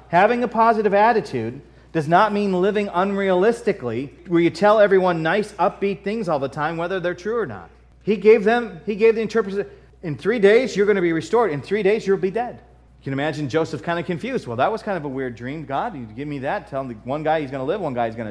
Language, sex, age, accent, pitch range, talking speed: English, male, 30-49, American, 130-210 Hz, 250 wpm